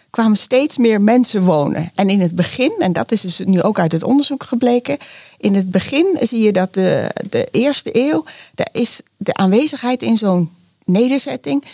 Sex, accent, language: female, Dutch, Dutch